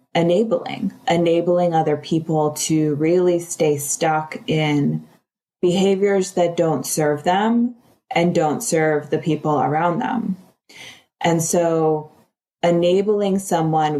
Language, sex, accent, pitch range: English, female, American, 150-175 Hz